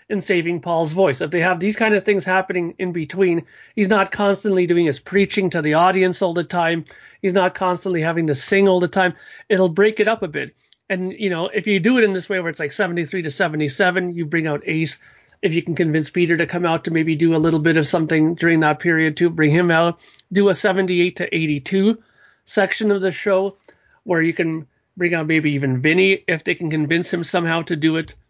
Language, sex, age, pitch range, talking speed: English, male, 40-59, 165-195 Hz, 235 wpm